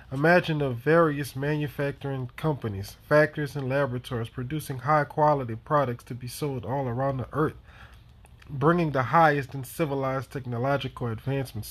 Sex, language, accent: male, English, American